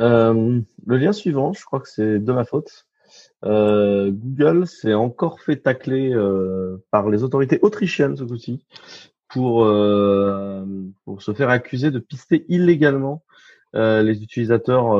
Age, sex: 30-49, male